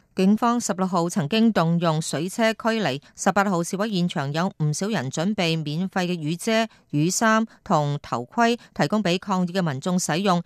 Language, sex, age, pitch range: Chinese, female, 30-49, 160-210 Hz